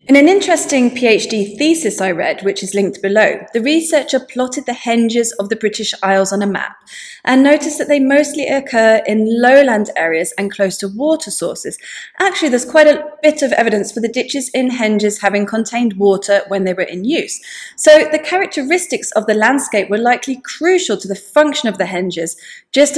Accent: British